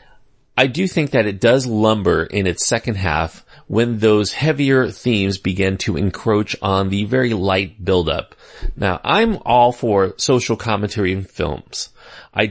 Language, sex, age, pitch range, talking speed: English, male, 30-49, 95-125 Hz, 155 wpm